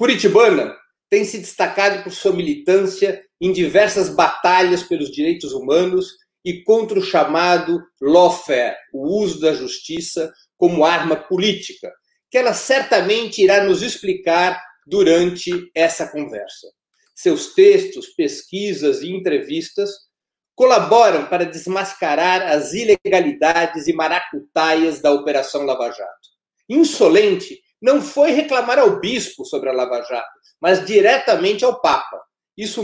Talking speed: 120 wpm